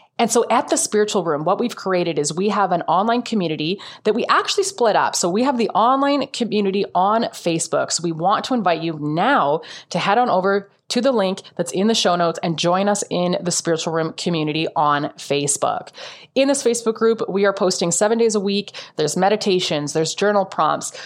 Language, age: English, 20-39